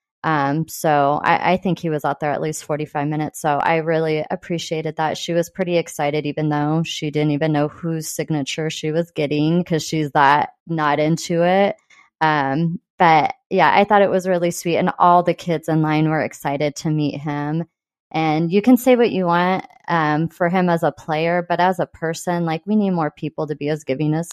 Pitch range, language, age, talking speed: 155-180 Hz, English, 20-39, 210 wpm